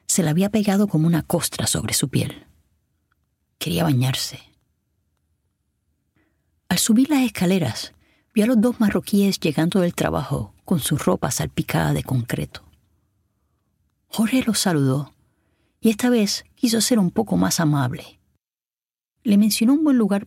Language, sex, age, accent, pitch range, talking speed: Spanish, female, 30-49, American, 125-205 Hz, 140 wpm